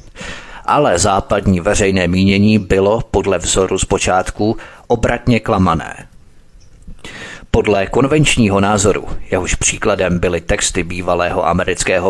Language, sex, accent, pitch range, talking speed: Czech, male, native, 95-120 Hz, 95 wpm